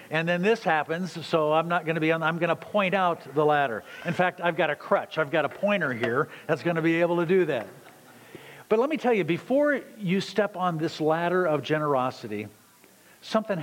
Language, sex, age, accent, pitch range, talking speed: English, male, 50-69, American, 145-190 Hz, 225 wpm